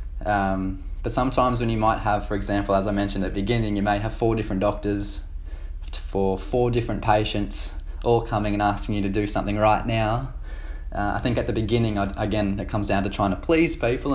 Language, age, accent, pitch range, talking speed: English, 20-39, Australian, 100-120 Hz, 210 wpm